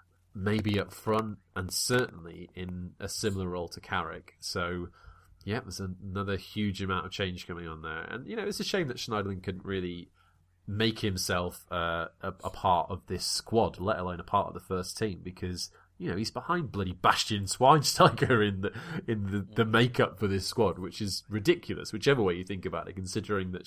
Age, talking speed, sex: 30-49, 195 wpm, male